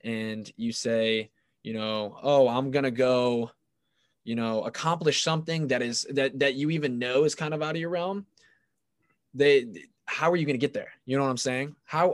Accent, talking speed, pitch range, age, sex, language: American, 200 wpm, 120-140 Hz, 20-39, male, English